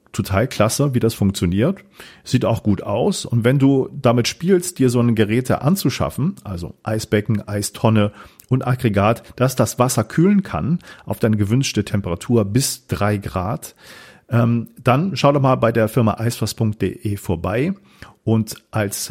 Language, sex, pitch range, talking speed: English, male, 100-130 Hz, 150 wpm